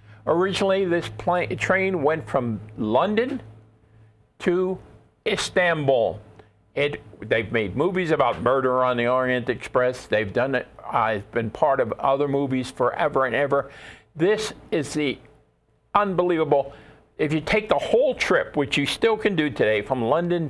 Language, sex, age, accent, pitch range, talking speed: English, male, 50-69, American, 115-160 Hz, 140 wpm